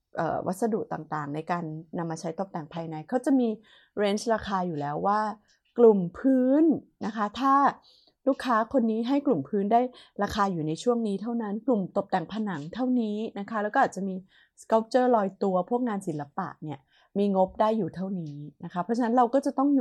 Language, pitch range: Thai, 180-235 Hz